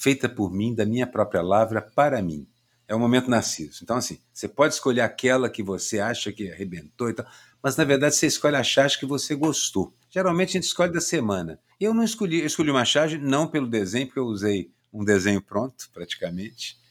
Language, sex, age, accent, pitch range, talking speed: Portuguese, male, 50-69, Brazilian, 100-135 Hz, 210 wpm